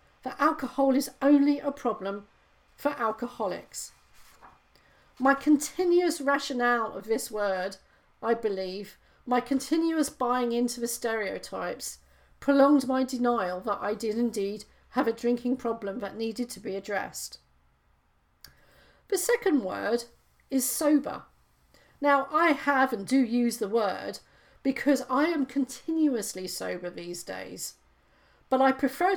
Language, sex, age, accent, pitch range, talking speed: English, female, 40-59, British, 215-280 Hz, 125 wpm